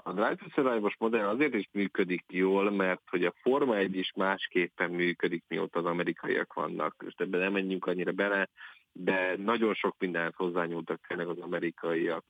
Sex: male